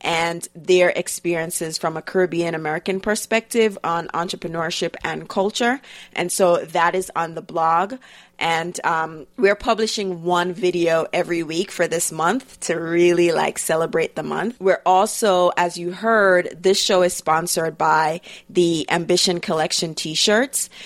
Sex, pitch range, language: female, 165-195 Hz, English